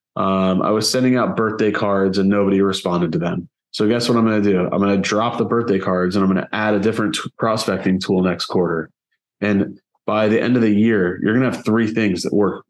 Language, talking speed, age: English, 250 wpm, 20-39